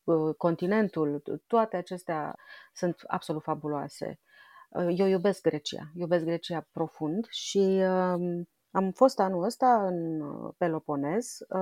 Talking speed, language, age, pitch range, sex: 100 wpm, Romanian, 30-49, 155-200 Hz, female